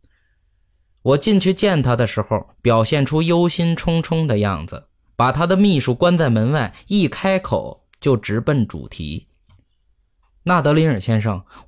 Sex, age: male, 20-39